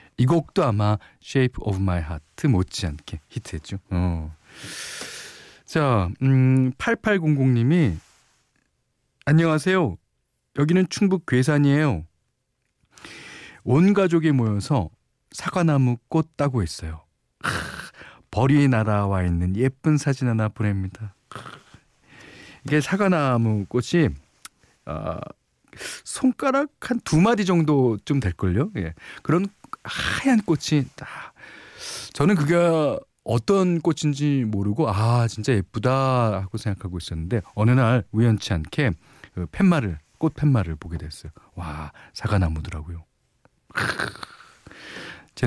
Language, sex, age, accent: Korean, male, 40-59, native